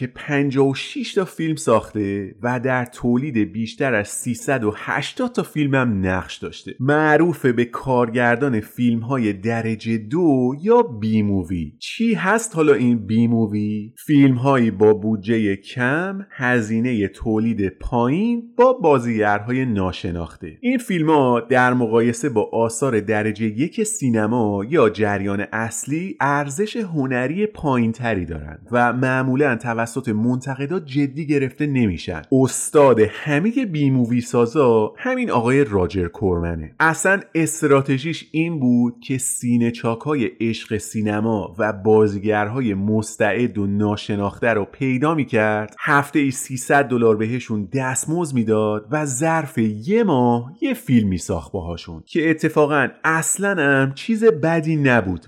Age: 30-49